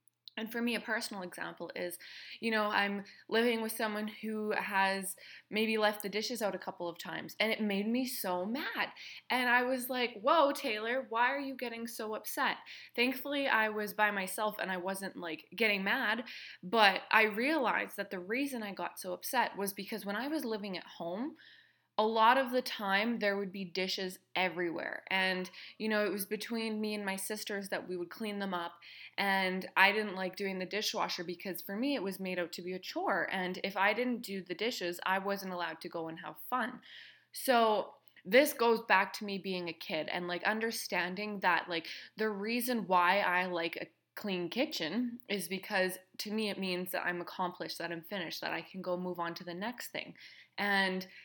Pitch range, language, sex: 185-225 Hz, English, female